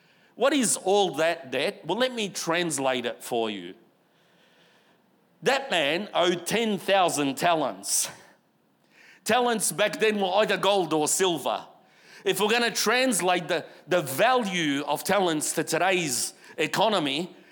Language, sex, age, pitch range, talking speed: English, male, 50-69, 150-220 Hz, 130 wpm